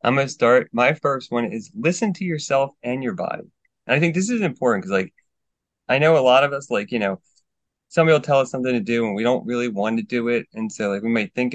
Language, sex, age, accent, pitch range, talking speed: English, male, 30-49, American, 100-130 Hz, 270 wpm